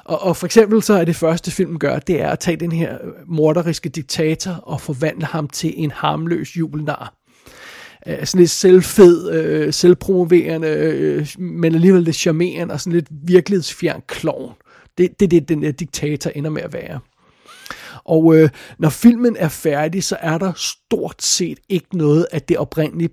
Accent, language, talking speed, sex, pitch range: native, Danish, 165 wpm, male, 155-185 Hz